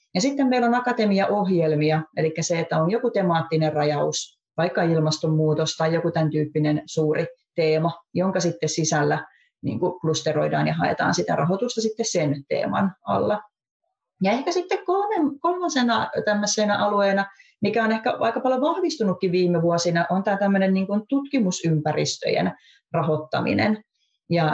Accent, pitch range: native, 155-205 Hz